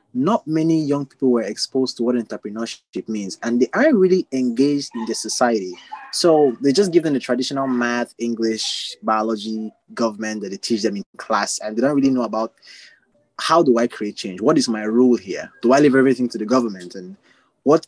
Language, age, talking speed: English, 20-39, 200 wpm